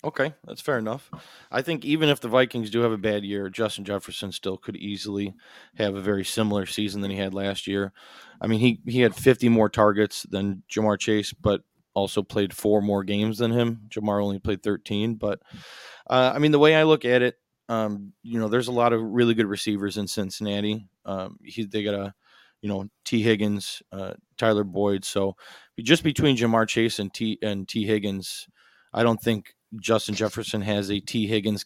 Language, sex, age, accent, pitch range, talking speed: English, male, 20-39, American, 100-115 Hz, 200 wpm